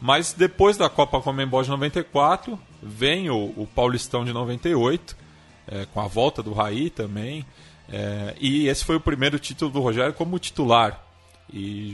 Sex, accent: male, Brazilian